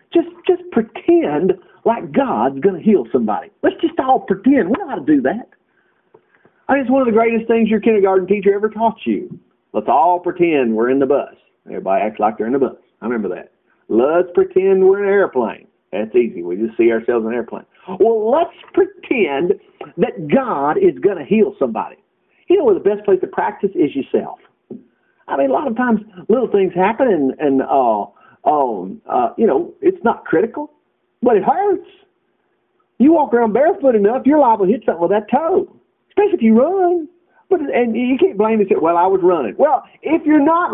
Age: 50-69